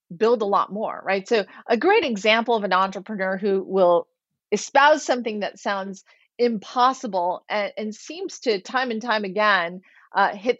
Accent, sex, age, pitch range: American, female, 30-49, 195-255 Hz